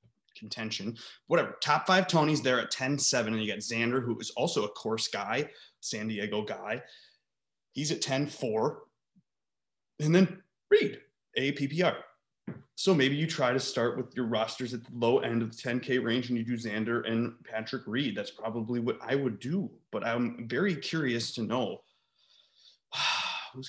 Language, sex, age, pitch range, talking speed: English, male, 20-39, 110-140 Hz, 170 wpm